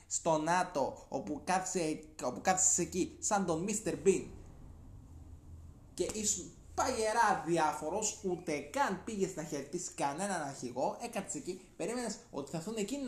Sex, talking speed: male, 130 wpm